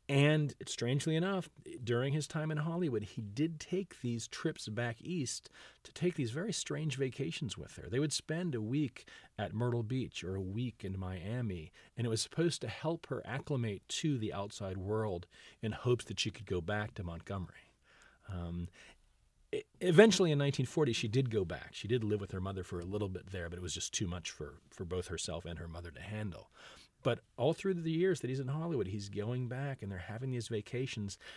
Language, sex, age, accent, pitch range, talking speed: English, male, 40-59, American, 100-135 Hz, 205 wpm